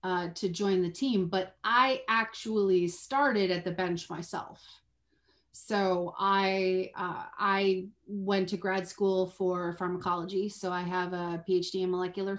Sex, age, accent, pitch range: female, 30-49, American, 180-205 Hz